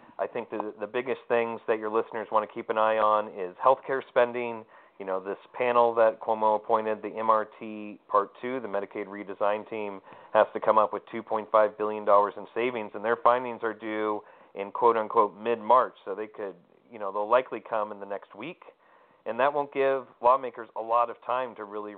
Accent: American